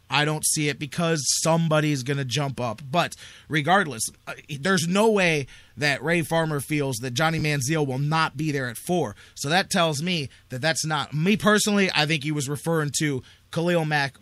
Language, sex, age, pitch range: English, male, 30-49, 130-165 Hz